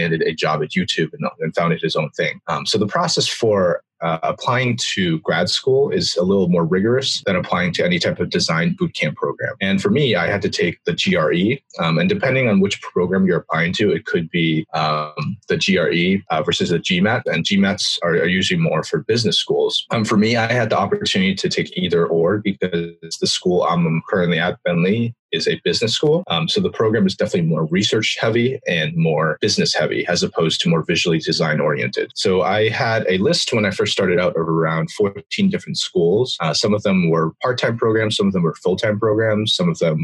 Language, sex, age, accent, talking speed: English, male, 30-49, American, 215 wpm